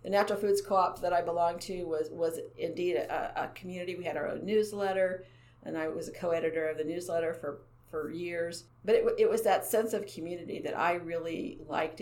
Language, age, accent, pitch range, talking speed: English, 50-69, American, 160-195 Hz, 210 wpm